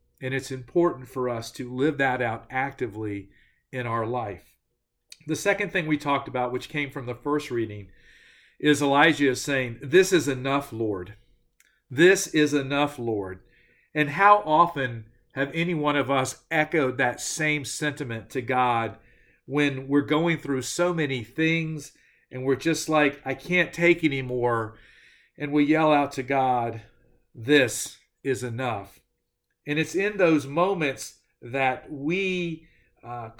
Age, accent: 50-69, American